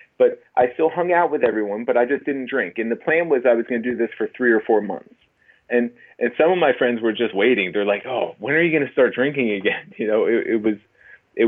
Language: English